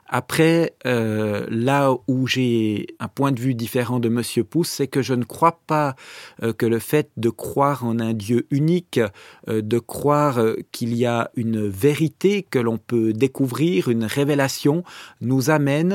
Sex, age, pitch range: male, 40-59, 120-150 Hz